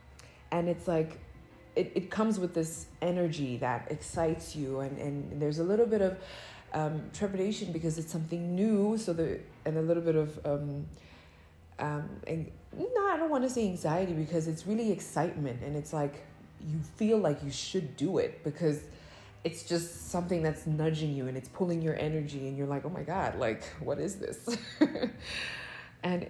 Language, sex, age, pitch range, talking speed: English, female, 20-39, 140-190 Hz, 180 wpm